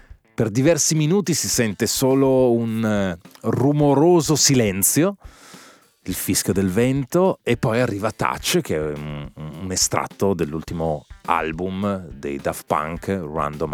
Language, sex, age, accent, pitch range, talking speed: Italian, male, 30-49, native, 95-140 Hz, 120 wpm